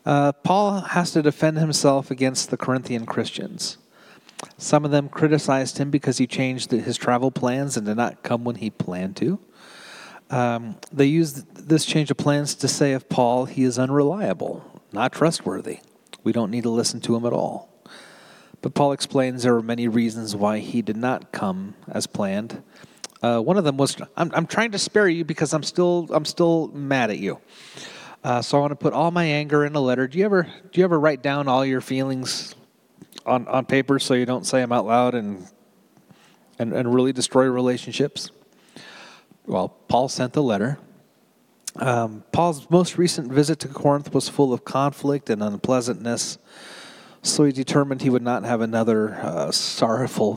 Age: 40-59